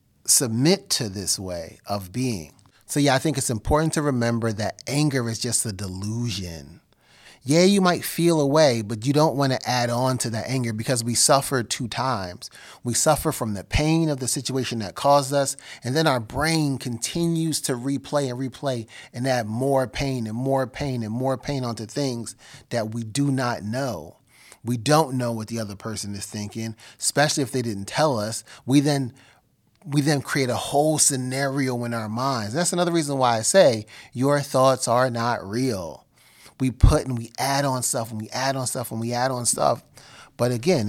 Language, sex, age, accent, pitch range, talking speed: English, male, 30-49, American, 115-140 Hz, 195 wpm